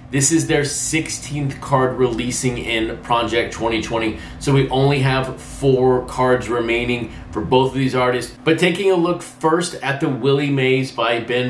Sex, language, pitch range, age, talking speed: male, English, 125-155 Hz, 30-49, 165 wpm